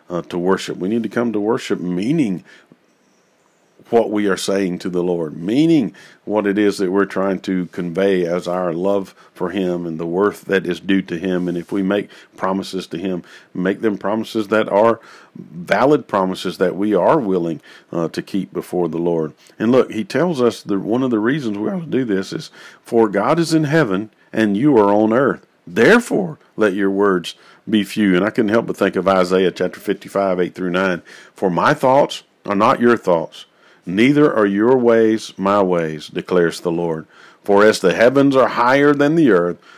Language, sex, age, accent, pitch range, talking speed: English, male, 50-69, American, 90-110 Hz, 200 wpm